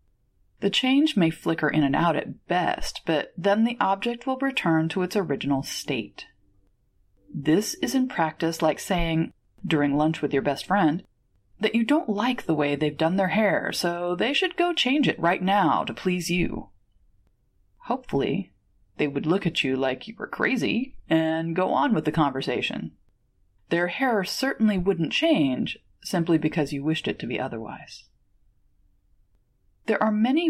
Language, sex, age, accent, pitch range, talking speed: English, female, 30-49, American, 150-220 Hz, 165 wpm